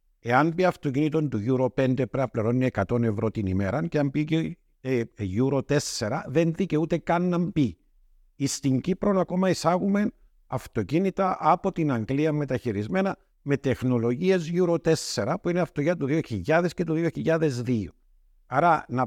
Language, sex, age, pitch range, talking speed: Greek, male, 50-69, 105-160 Hz, 145 wpm